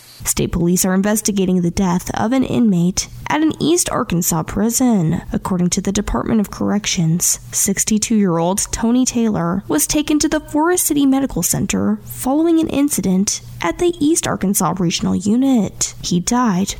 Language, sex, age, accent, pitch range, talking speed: English, female, 10-29, American, 180-250 Hz, 150 wpm